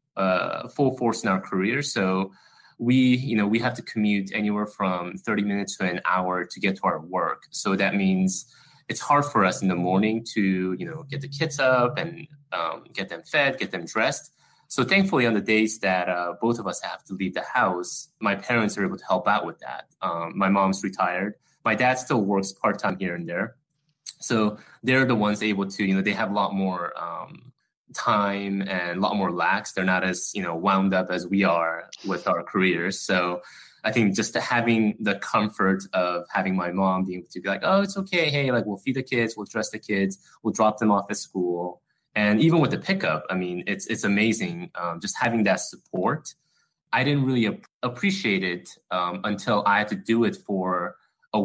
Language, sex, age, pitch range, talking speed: English, male, 20-39, 95-120 Hz, 215 wpm